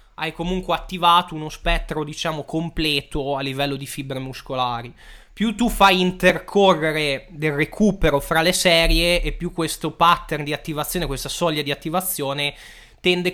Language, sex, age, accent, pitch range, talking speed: Italian, male, 20-39, native, 150-175 Hz, 145 wpm